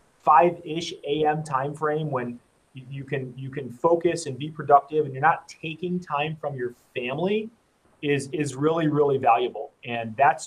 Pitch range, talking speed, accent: 135-170 Hz, 155 wpm, American